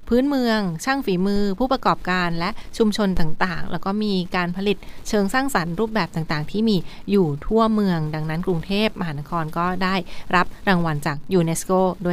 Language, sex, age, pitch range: Thai, female, 20-39, 180-220 Hz